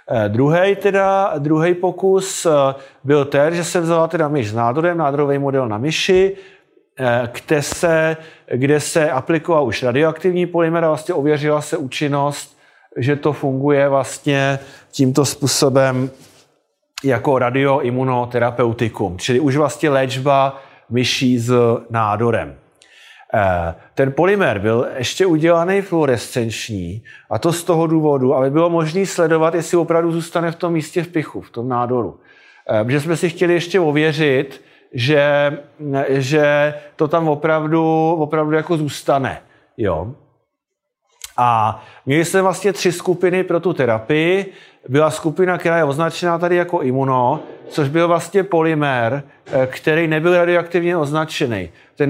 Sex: male